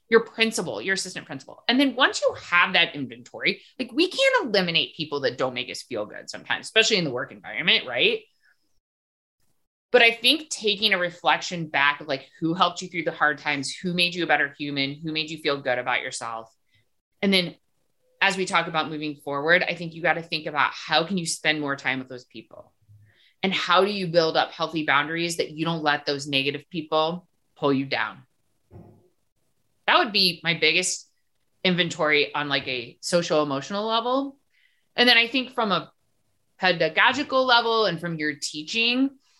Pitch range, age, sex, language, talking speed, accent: 150-225 Hz, 30-49, female, English, 190 wpm, American